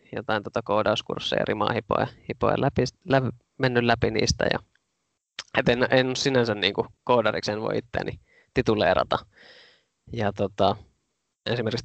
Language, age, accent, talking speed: Finnish, 20-39, native, 110 wpm